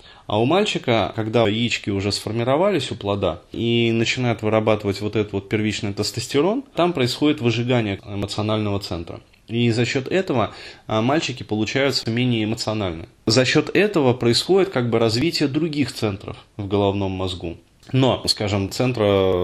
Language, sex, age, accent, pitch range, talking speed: Russian, male, 20-39, native, 105-125 Hz, 140 wpm